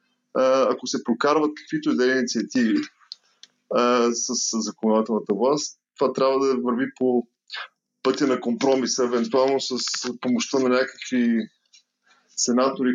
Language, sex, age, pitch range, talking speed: Bulgarian, male, 20-39, 110-155 Hz, 120 wpm